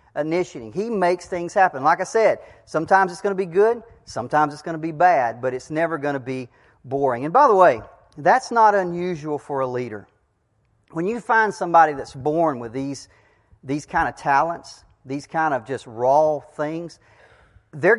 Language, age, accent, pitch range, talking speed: English, 40-59, American, 130-175 Hz, 185 wpm